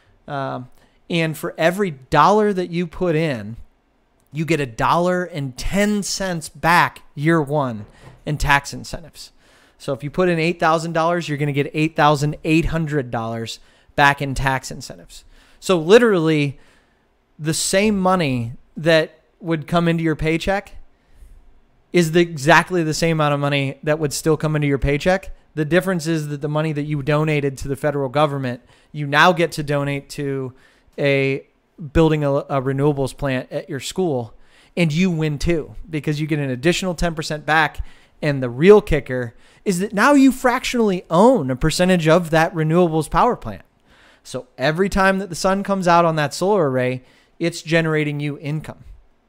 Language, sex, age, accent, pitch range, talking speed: English, male, 30-49, American, 140-175 Hz, 165 wpm